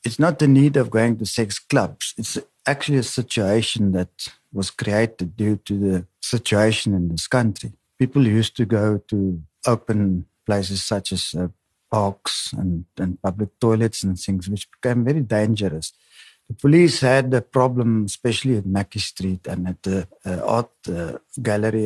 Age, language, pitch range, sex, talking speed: 50-69, English, 95-120 Hz, male, 165 wpm